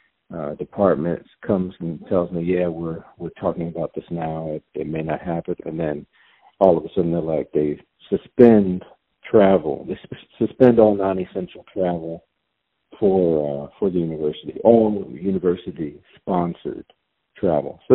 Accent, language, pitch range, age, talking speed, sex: American, English, 80-105 Hz, 50-69, 150 wpm, male